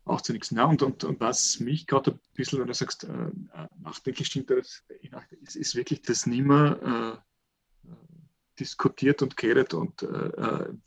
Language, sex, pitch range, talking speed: German, male, 120-165 Hz, 165 wpm